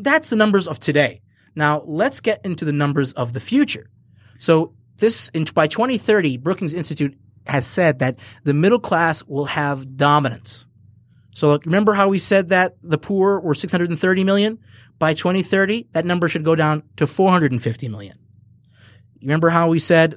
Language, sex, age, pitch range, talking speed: English, male, 30-49, 125-175 Hz, 160 wpm